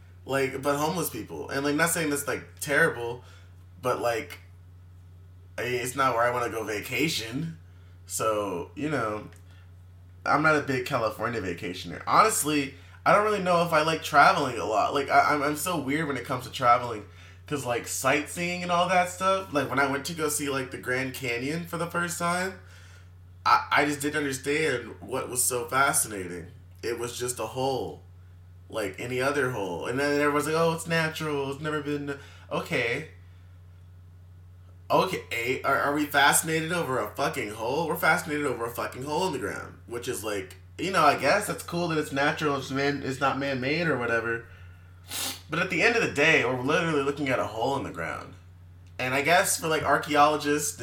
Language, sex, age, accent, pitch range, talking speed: English, male, 20-39, American, 90-145 Hz, 195 wpm